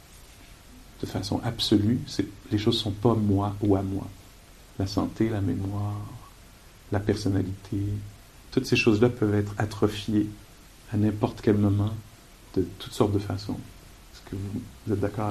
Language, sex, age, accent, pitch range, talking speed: English, male, 50-69, French, 105-145 Hz, 155 wpm